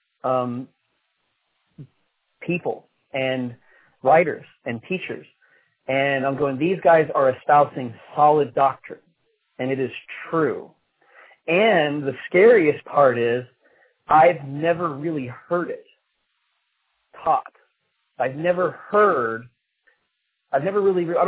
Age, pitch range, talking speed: 30-49, 135-170 Hz, 105 wpm